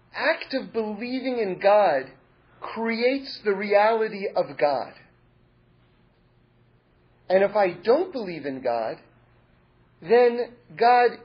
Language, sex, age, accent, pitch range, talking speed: English, male, 40-59, American, 185-250 Hz, 100 wpm